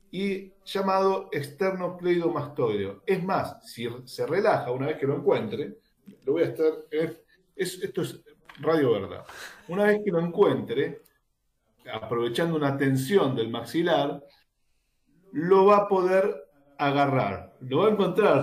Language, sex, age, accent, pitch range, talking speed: Spanish, male, 40-59, Argentinian, 140-190 Hz, 135 wpm